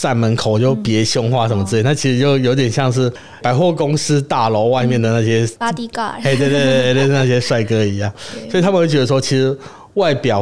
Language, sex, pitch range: Chinese, male, 105-135 Hz